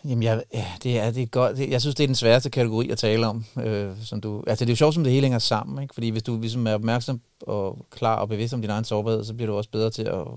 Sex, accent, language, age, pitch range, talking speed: male, native, Danish, 30-49, 110-125 Hz, 320 wpm